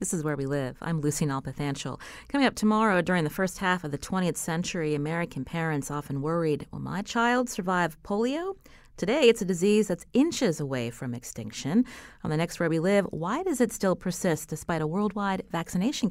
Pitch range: 155-210 Hz